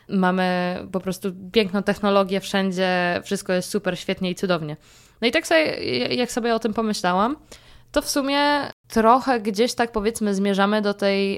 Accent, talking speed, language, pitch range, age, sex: native, 165 wpm, Polish, 190-225 Hz, 20-39, female